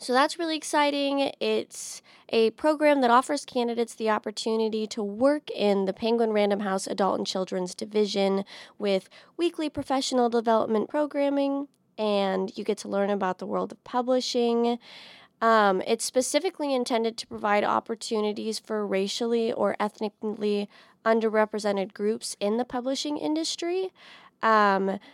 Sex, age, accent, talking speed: female, 20-39, American, 135 wpm